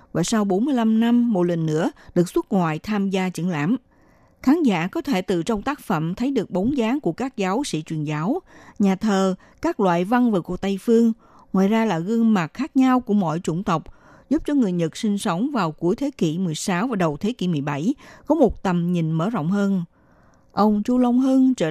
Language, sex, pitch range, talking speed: Vietnamese, female, 170-235 Hz, 220 wpm